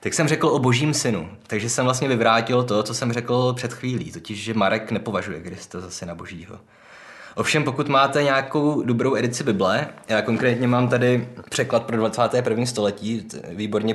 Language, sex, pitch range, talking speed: Czech, male, 105-125 Hz, 170 wpm